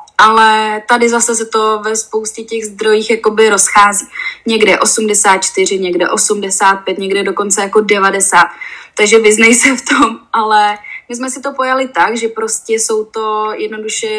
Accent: native